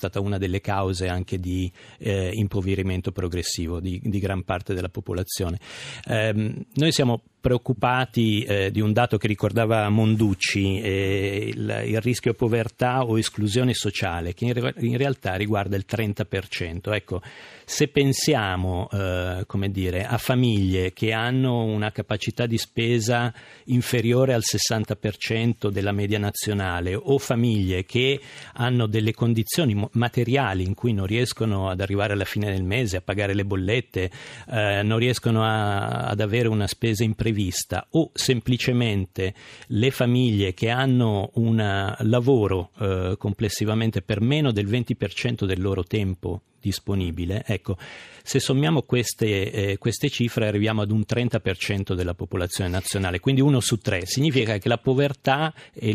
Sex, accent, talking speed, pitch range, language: male, native, 145 wpm, 100-120 Hz, Italian